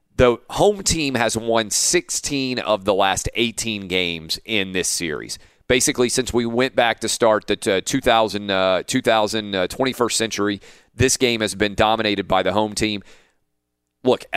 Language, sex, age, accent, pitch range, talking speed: English, male, 40-59, American, 95-115 Hz, 160 wpm